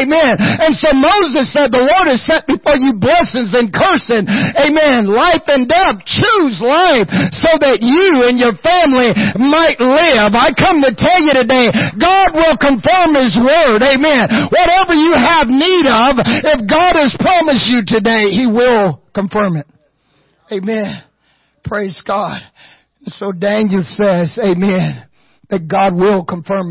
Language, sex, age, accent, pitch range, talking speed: English, male, 50-69, American, 180-255 Hz, 150 wpm